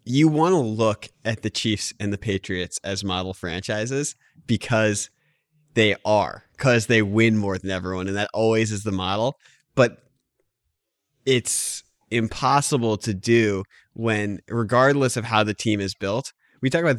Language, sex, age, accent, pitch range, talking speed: English, male, 20-39, American, 100-130 Hz, 155 wpm